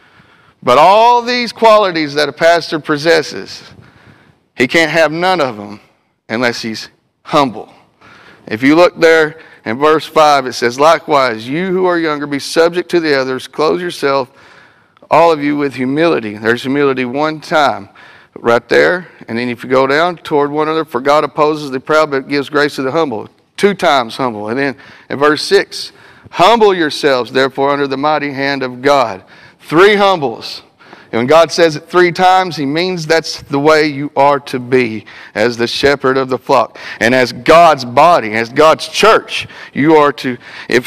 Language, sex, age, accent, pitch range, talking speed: English, male, 40-59, American, 135-165 Hz, 180 wpm